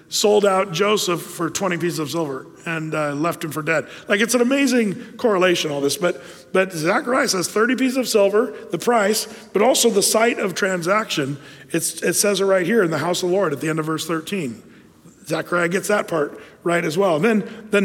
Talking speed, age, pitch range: 220 wpm, 40-59, 160-210 Hz